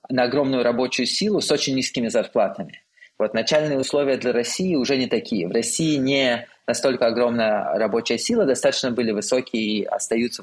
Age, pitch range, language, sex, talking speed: 20-39, 115-130 Hz, Russian, male, 160 wpm